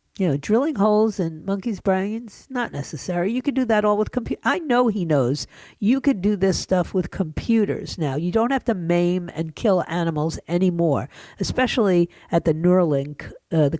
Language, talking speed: English, 185 wpm